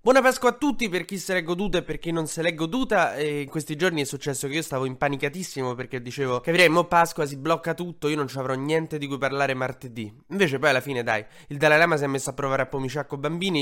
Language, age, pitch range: Italian, 20-39, 125-155 Hz